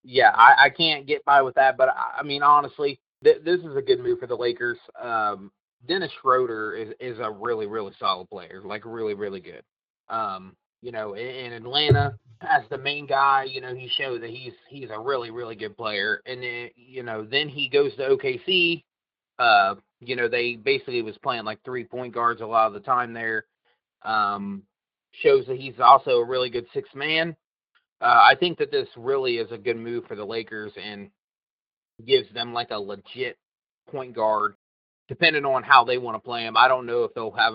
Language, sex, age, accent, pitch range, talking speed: English, male, 30-49, American, 110-165 Hz, 205 wpm